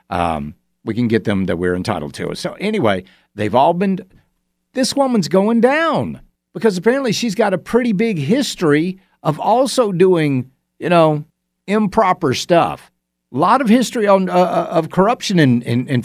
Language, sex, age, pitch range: English, male, 50-69, 135-215 Hz